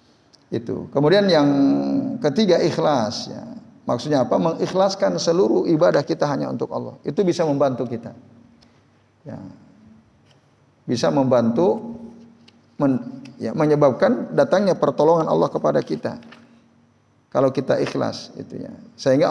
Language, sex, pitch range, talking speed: Indonesian, male, 125-170 Hz, 110 wpm